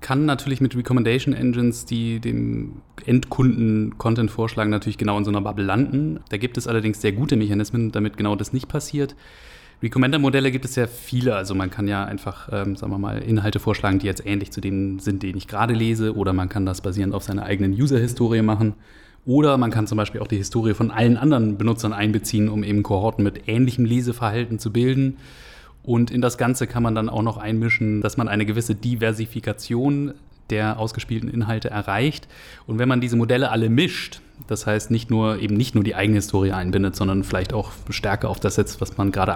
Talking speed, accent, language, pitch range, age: 200 wpm, German, German, 100-120 Hz, 30-49